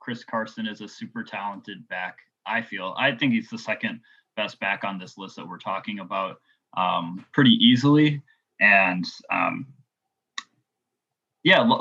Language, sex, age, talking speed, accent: English, male, 20-39, 145 wpm, American